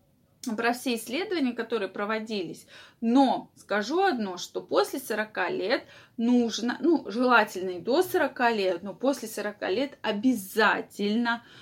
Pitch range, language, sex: 210-260 Hz, Russian, female